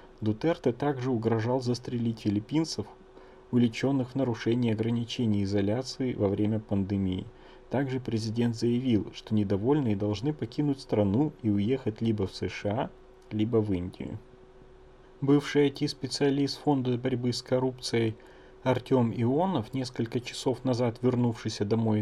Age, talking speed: 30-49, 115 wpm